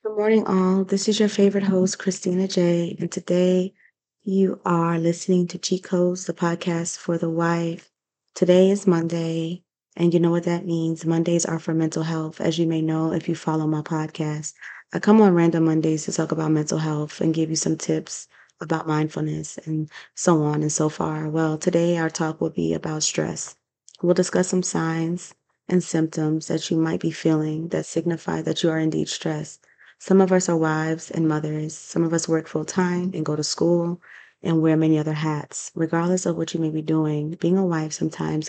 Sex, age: female, 20-39